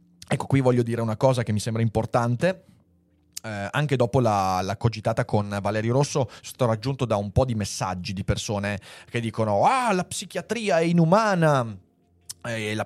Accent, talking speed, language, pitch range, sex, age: native, 170 wpm, Italian, 100-140 Hz, male, 30-49